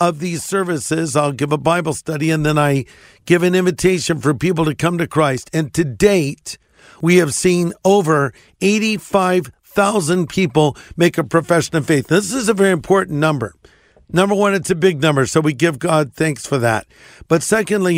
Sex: male